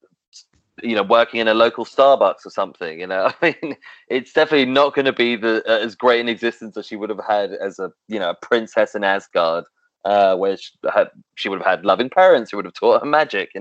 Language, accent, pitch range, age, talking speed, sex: English, British, 105-130 Hz, 20-39, 240 wpm, male